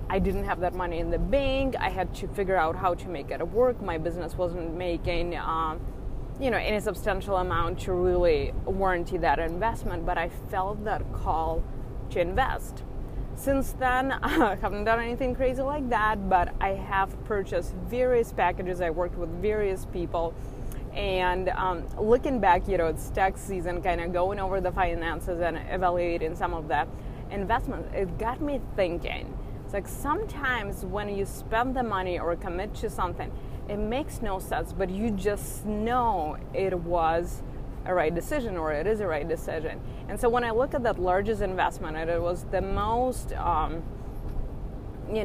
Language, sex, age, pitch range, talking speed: English, female, 20-39, 170-220 Hz, 170 wpm